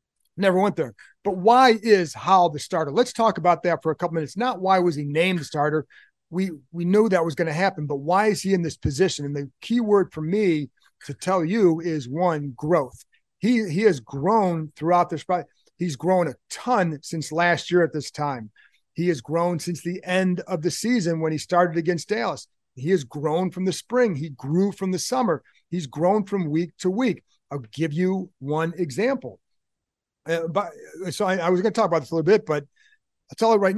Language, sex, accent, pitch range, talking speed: English, male, American, 155-190 Hz, 215 wpm